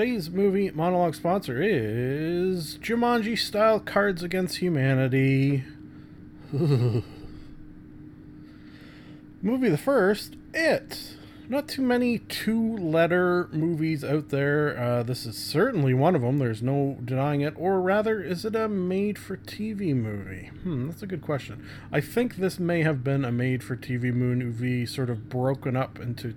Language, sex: English, male